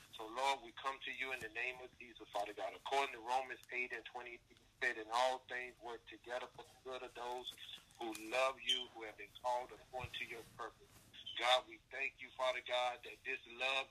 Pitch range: 120-135 Hz